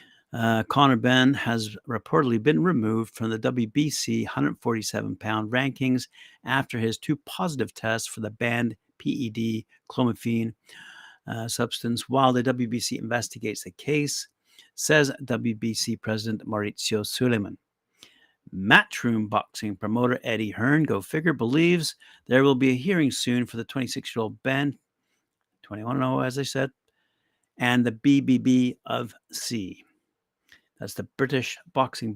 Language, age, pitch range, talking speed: English, 50-69, 110-135 Hz, 130 wpm